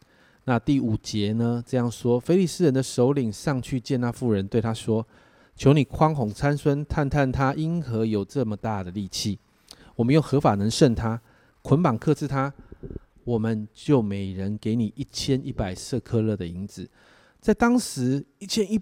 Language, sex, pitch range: Chinese, male, 115-145 Hz